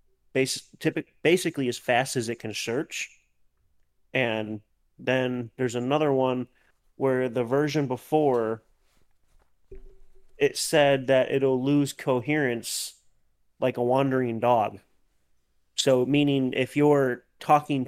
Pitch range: 115-135 Hz